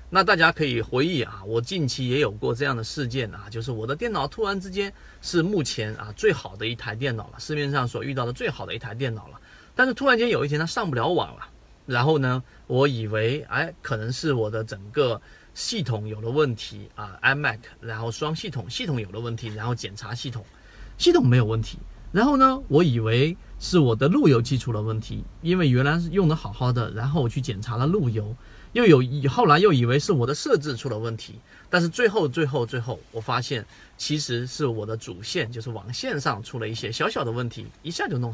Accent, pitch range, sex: native, 115-155 Hz, male